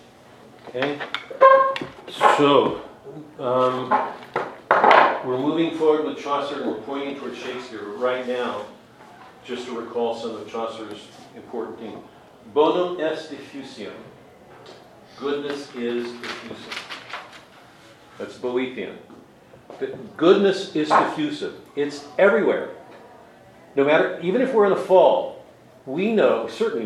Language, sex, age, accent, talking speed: English, male, 50-69, American, 105 wpm